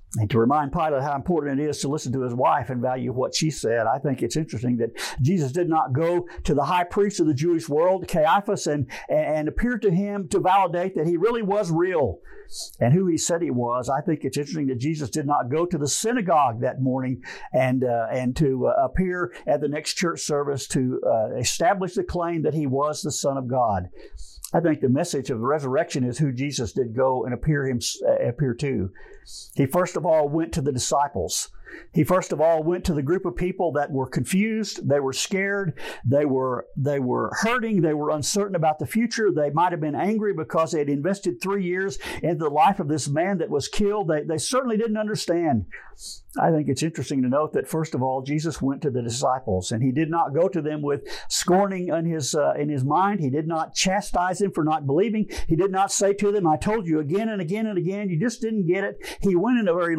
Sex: male